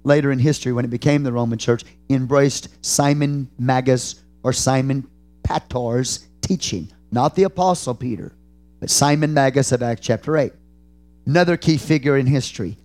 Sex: male